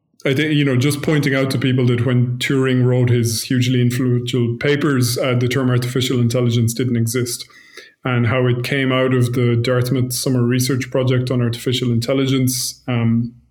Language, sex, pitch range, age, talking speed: English, male, 125-135 Hz, 20-39, 175 wpm